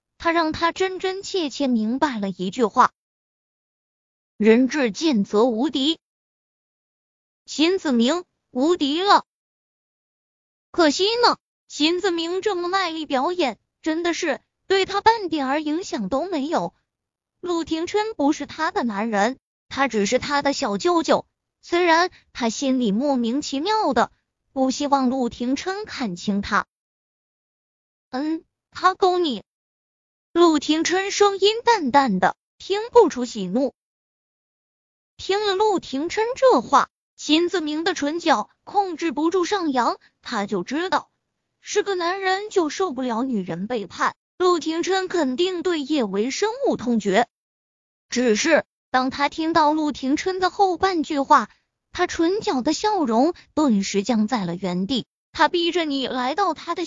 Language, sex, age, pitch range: Chinese, female, 20-39, 255-360 Hz